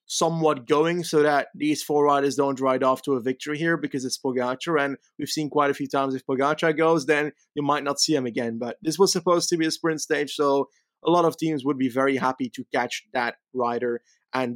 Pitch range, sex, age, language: 140-170 Hz, male, 20-39, English